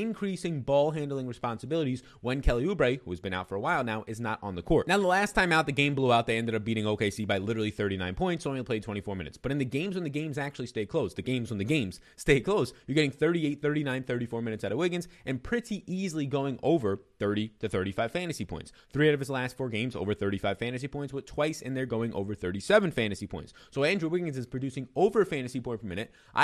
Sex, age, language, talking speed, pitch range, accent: male, 30-49, English, 245 wpm, 110-150 Hz, American